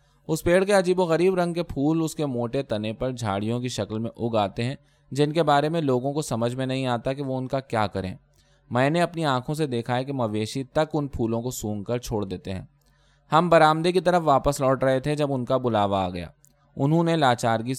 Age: 20-39